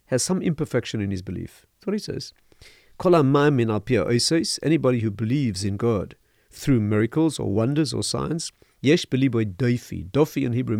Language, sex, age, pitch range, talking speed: English, male, 50-69, 110-155 Hz, 165 wpm